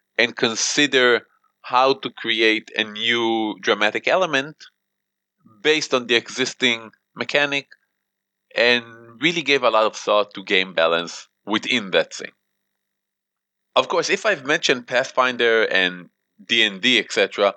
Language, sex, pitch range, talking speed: English, male, 110-130 Hz, 125 wpm